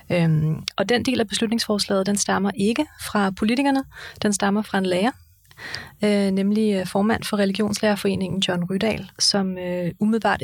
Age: 30-49